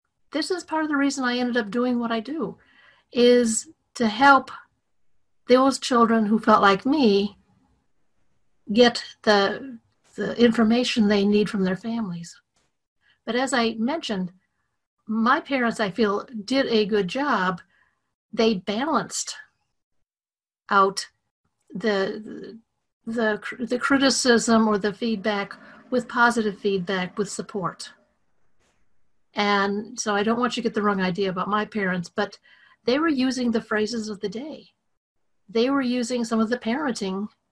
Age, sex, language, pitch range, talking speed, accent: 50-69, female, English, 205-240 Hz, 140 wpm, American